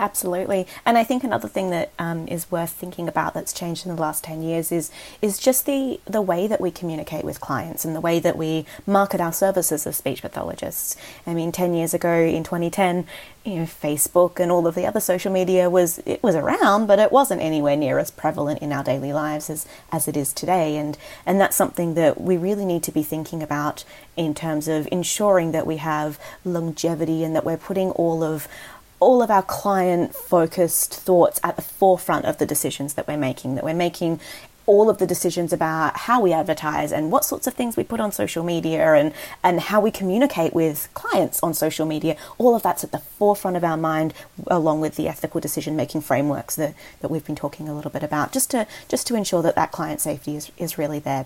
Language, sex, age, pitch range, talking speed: English, female, 30-49, 155-185 Hz, 220 wpm